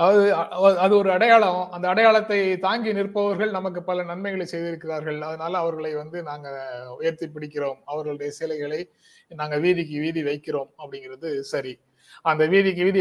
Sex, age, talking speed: male, 30-49, 135 wpm